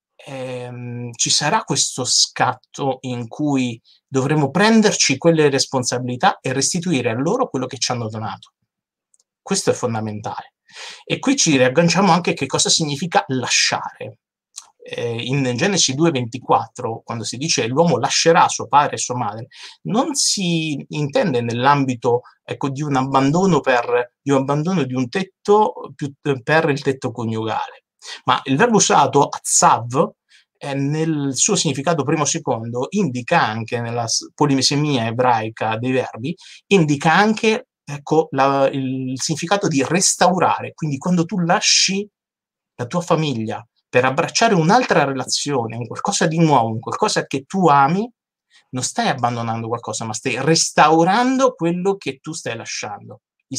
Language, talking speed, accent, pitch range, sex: Italian, 135 wpm, native, 125-175 Hz, male